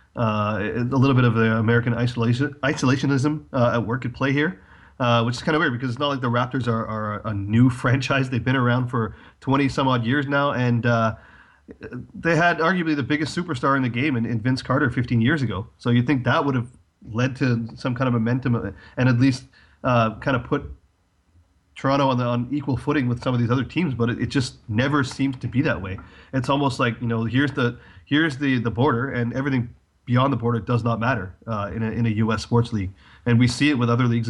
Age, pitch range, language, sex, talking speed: 30-49, 115-135 Hz, English, male, 235 wpm